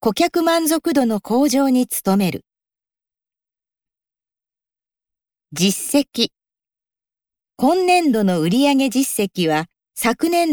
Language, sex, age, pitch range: Japanese, female, 40-59, 190-305 Hz